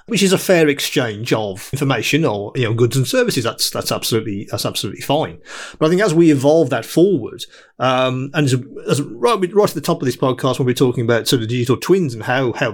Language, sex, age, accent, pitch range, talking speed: English, male, 40-59, British, 120-155 Hz, 235 wpm